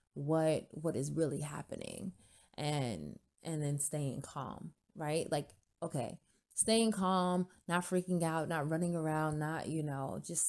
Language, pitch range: English, 150-175 Hz